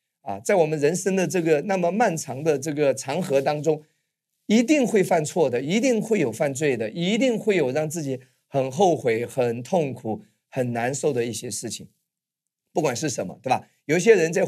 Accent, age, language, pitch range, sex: native, 30-49, Chinese, 135-185 Hz, male